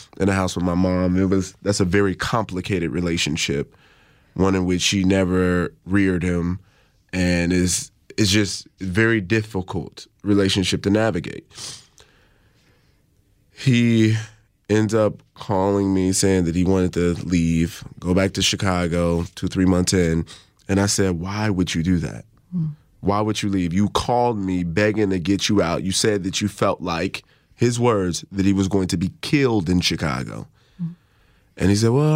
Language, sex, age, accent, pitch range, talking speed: English, male, 20-39, American, 90-110 Hz, 165 wpm